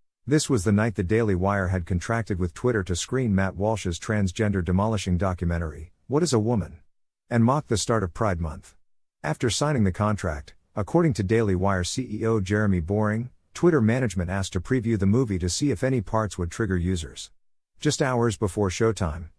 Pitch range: 90-115 Hz